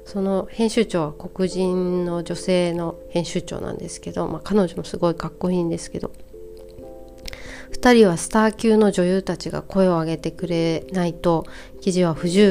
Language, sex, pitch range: Japanese, female, 165-200 Hz